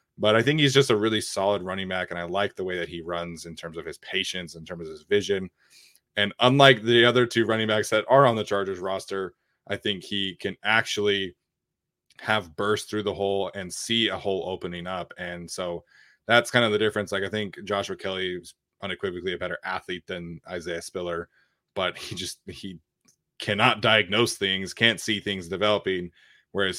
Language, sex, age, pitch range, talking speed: English, male, 20-39, 90-110 Hz, 200 wpm